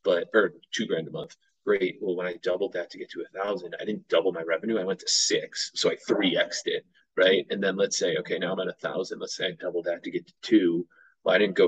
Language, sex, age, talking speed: English, male, 30-49, 285 wpm